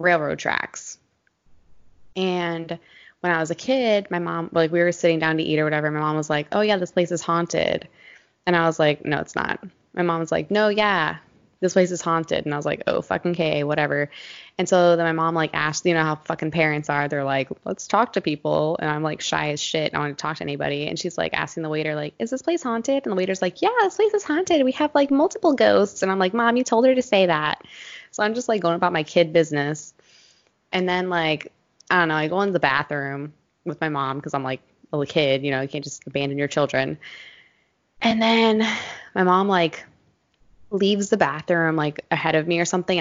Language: English